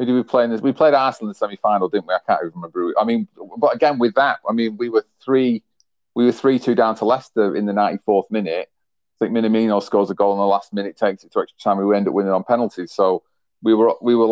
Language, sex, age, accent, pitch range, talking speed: English, male, 40-59, British, 95-120 Hz, 255 wpm